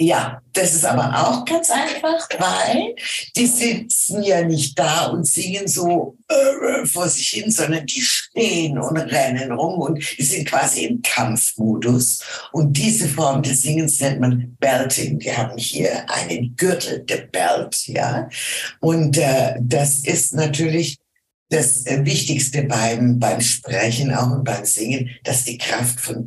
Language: German